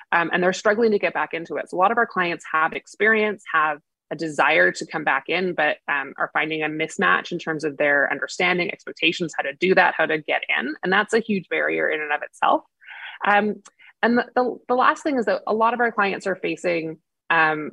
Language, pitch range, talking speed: English, 155-200 Hz, 235 wpm